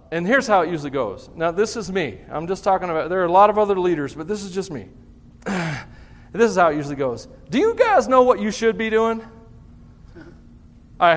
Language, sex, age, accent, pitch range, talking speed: English, male, 40-59, American, 165-260 Hz, 225 wpm